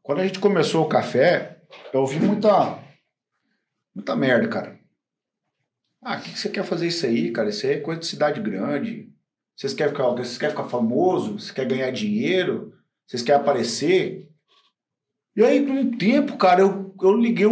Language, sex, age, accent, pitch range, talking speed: Portuguese, male, 50-69, Brazilian, 150-210 Hz, 170 wpm